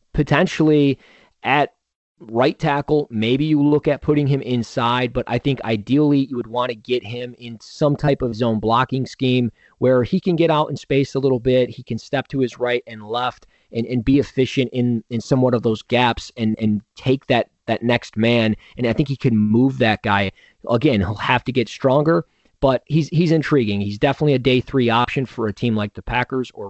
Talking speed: 210 wpm